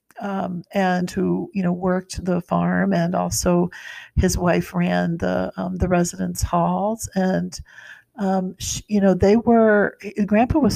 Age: 50-69